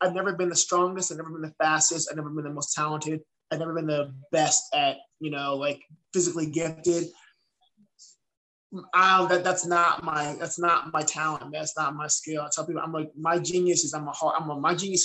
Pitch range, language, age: 150-165 Hz, English, 20-39